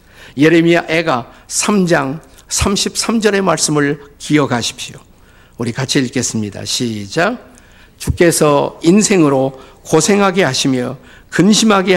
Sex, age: male, 50-69